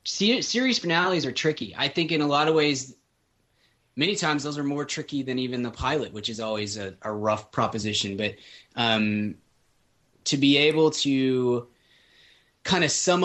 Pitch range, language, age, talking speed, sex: 115-145 Hz, English, 20-39, 170 wpm, male